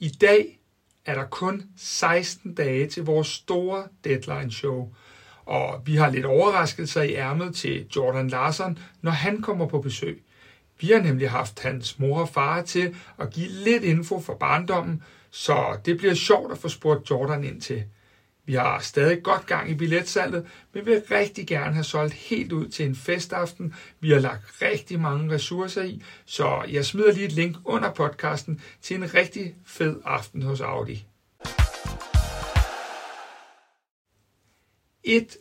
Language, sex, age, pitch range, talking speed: Danish, male, 60-79, 135-185 Hz, 160 wpm